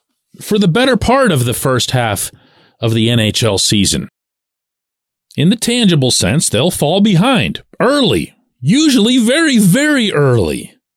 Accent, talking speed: American, 130 wpm